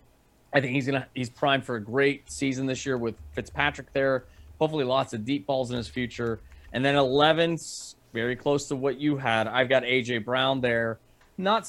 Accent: American